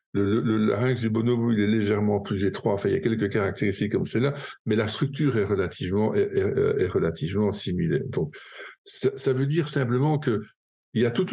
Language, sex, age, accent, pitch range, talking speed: French, male, 50-69, French, 105-135 Hz, 205 wpm